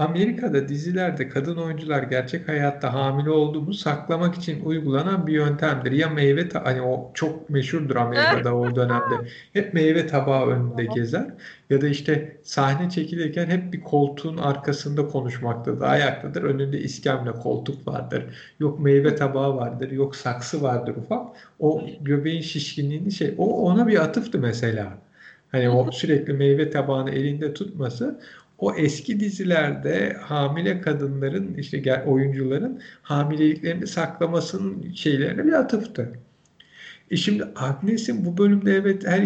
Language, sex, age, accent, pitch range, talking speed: Turkish, male, 50-69, native, 140-180 Hz, 130 wpm